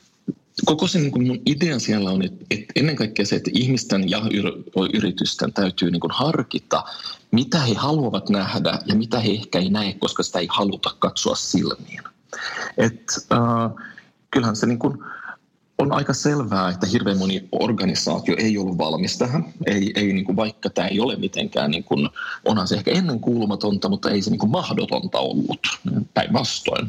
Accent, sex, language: native, male, Finnish